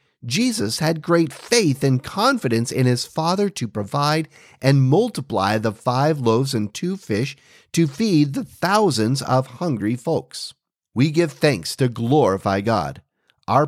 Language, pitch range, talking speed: English, 130-170 Hz, 145 wpm